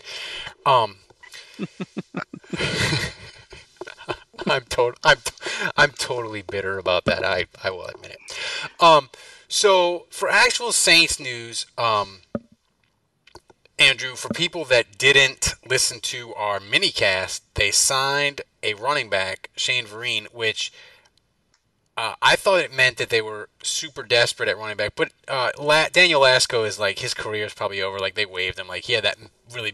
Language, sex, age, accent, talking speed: English, male, 30-49, American, 145 wpm